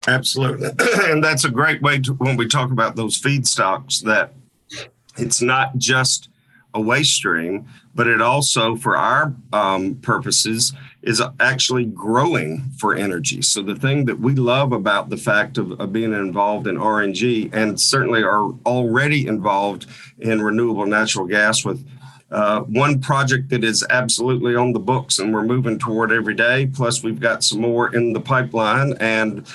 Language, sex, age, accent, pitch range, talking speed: English, male, 50-69, American, 115-135 Hz, 165 wpm